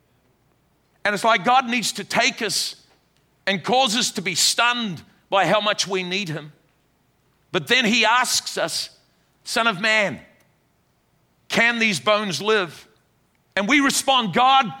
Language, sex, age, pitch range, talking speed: English, male, 50-69, 205-250 Hz, 145 wpm